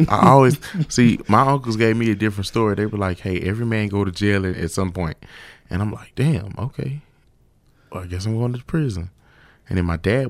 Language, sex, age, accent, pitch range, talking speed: English, male, 20-39, American, 85-105 Hz, 220 wpm